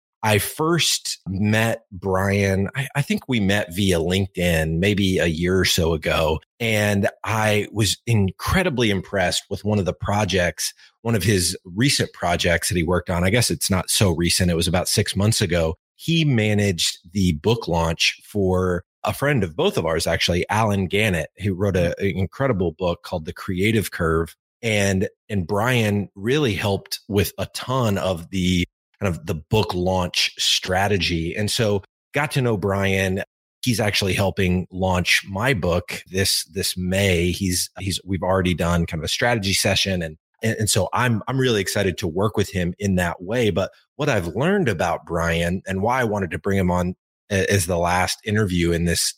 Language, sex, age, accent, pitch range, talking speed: English, male, 30-49, American, 90-105 Hz, 180 wpm